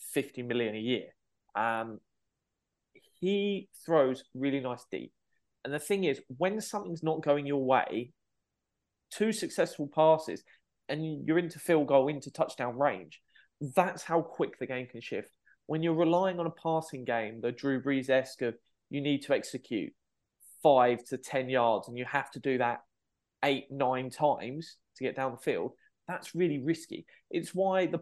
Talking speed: 165 wpm